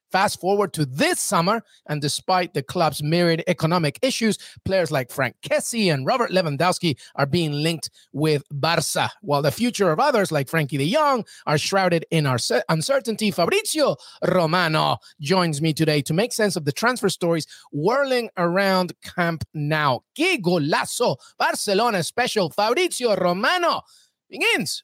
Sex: male